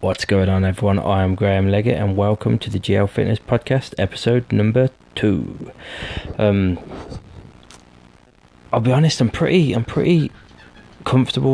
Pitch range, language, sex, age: 95-110 Hz, English, male, 20-39